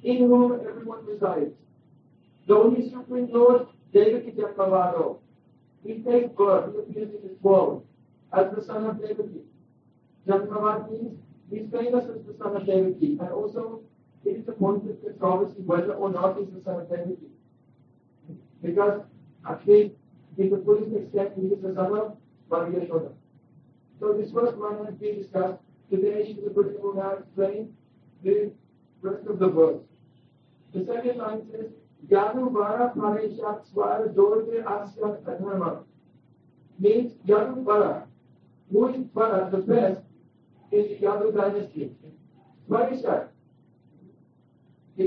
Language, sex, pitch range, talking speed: English, male, 190-230 Hz, 140 wpm